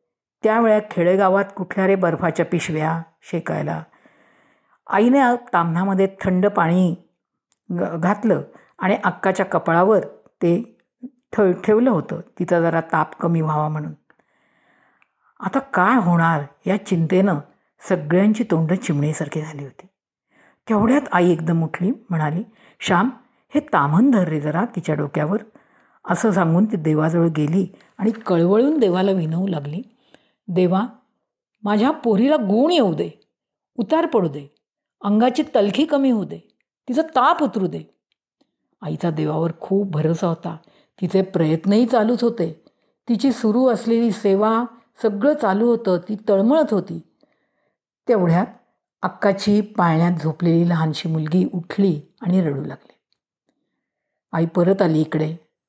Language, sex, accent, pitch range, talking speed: Marathi, female, native, 170-225 Hz, 120 wpm